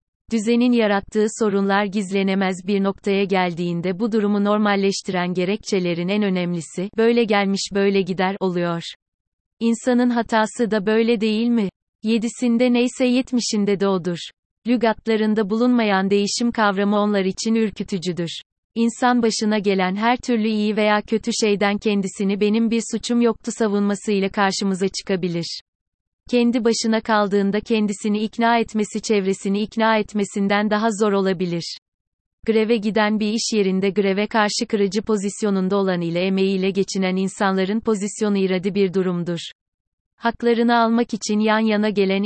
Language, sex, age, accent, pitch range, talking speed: Turkish, female, 30-49, native, 195-225 Hz, 125 wpm